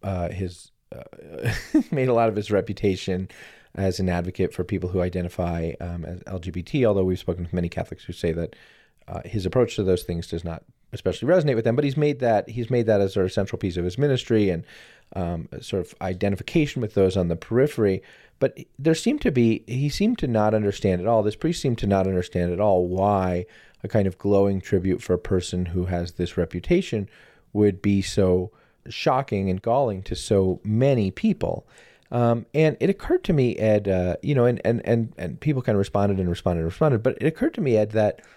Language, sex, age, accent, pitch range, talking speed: English, male, 30-49, American, 90-120 Hz, 215 wpm